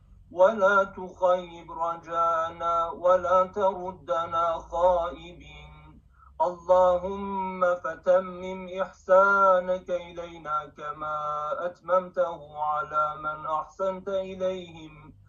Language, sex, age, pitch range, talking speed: Turkish, male, 40-59, 170-185 Hz, 65 wpm